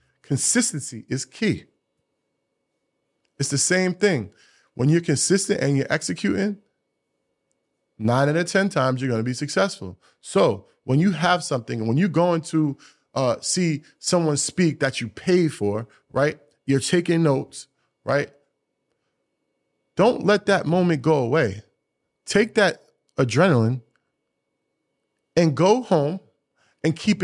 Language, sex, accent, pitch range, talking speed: English, male, American, 130-180 Hz, 130 wpm